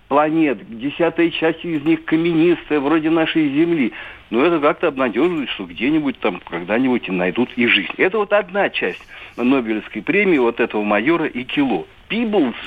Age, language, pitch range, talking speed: 60-79, Russian, 120-195 Hz, 145 wpm